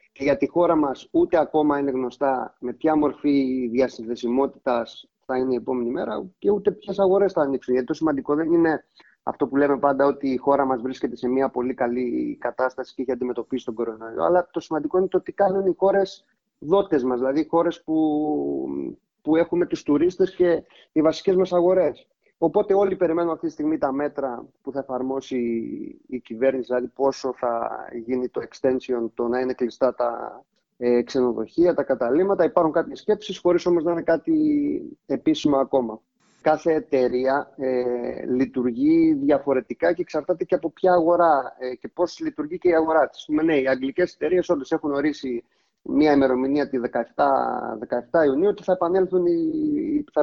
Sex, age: male, 30-49